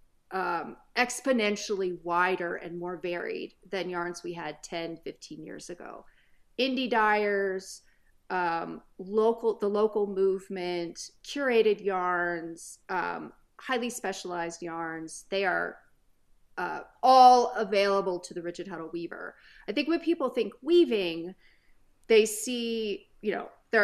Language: English